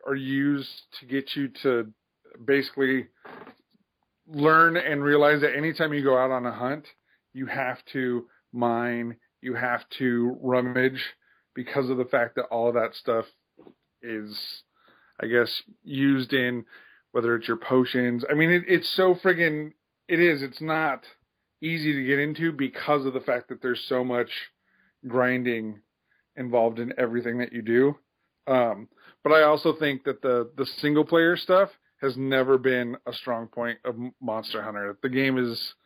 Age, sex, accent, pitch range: 30-49, male, American, 120-140 Hz